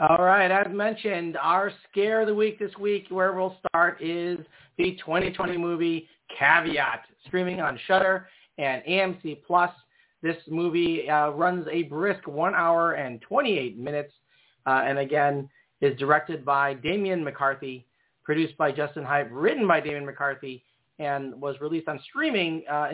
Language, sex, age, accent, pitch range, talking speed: English, male, 30-49, American, 140-180 Hz, 150 wpm